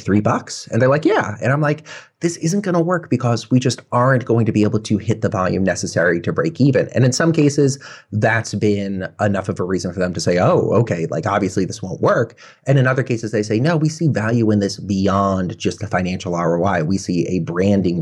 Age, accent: 30-49, American